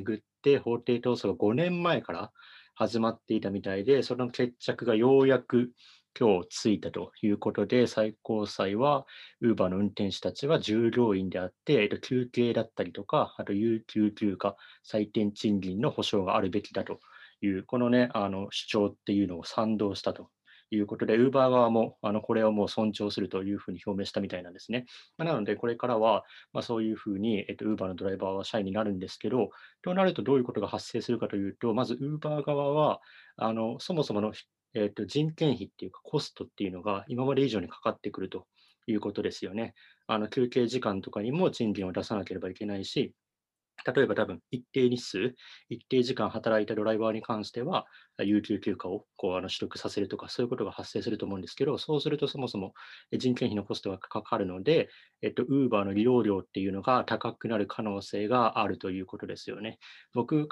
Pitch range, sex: 100-125 Hz, male